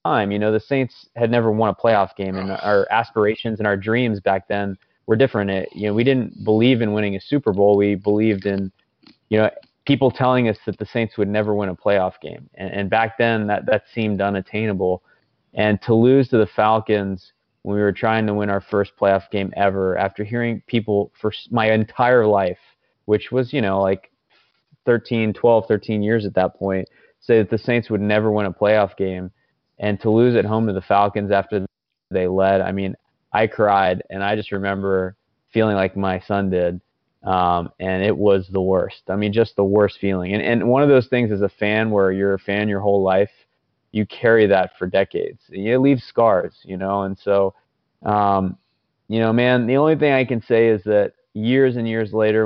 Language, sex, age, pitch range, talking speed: English, male, 20-39, 95-115 Hz, 210 wpm